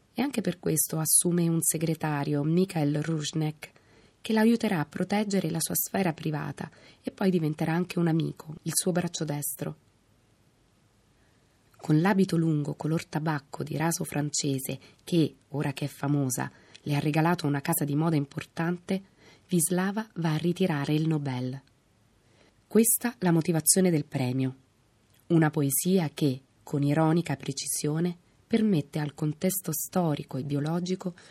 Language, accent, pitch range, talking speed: Italian, native, 140-180 Hz, 140 wpm